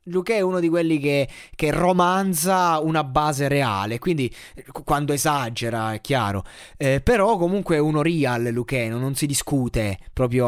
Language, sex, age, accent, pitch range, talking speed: Italian, male, 20-39, native, 125-160 Hz, 155 wpm